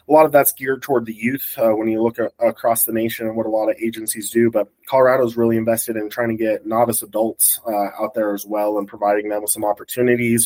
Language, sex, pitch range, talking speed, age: English, male, 105-125 Hz, 250 wpm, 20-39